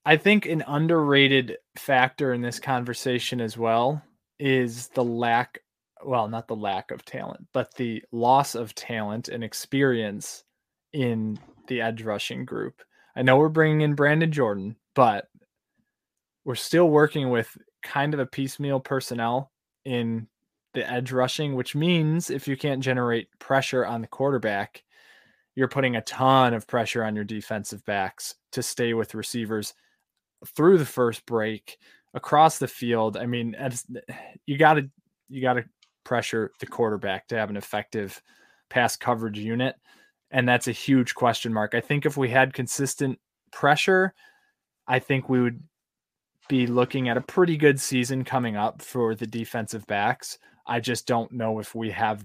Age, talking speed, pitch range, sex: 20-39, 155 wpm, 115-140 Hz, male